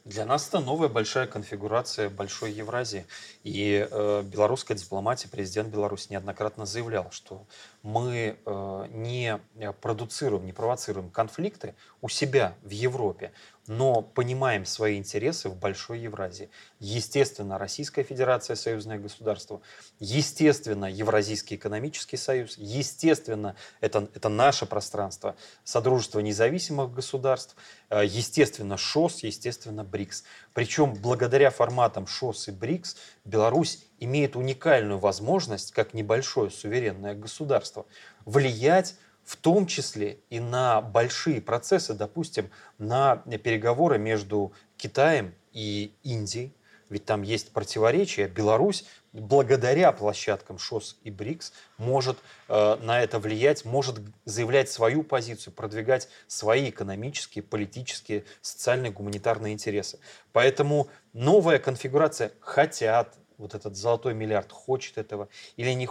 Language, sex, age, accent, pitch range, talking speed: Russian, male, 30-49, native, 105-130 Hz, 110 wpm